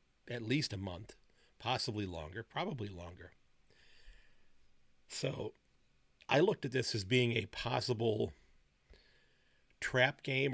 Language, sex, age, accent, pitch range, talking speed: English, male, 50-69, American, 100-125 Hz, 110 wpm